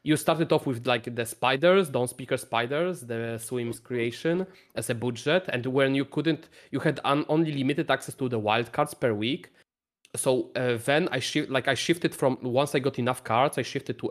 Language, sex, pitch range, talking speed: English, male, 115-140 Hz, 205 wpm